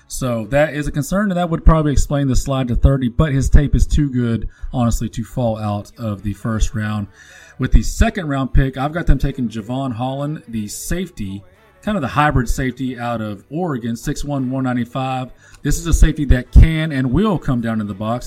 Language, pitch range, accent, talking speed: English, 115-150 Hz, American, 210 wpm